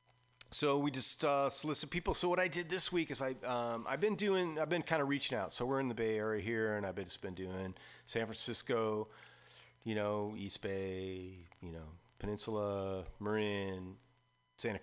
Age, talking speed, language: 30-49, 195 wpm, English